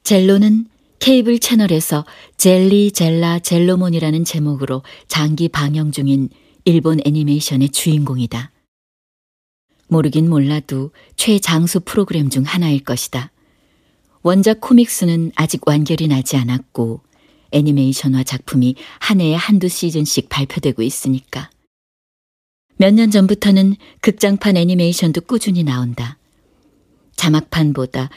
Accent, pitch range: native, 135-175 Hz